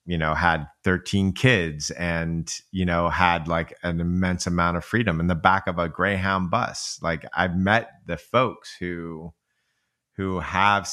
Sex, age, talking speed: male, 30-49, 165 wpm